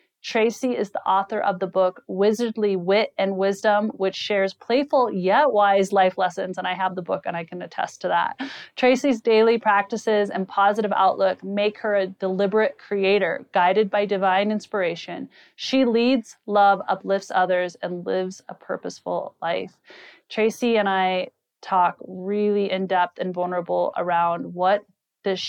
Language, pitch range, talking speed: English, 185-220 Hz, 155 wpm